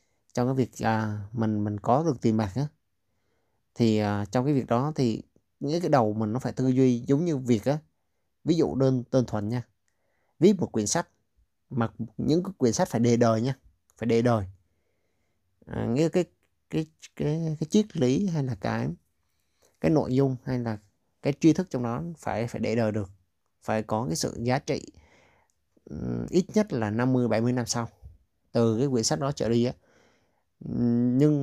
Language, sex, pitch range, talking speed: Vietnamese, male, 105-130 Hz, 190 wpm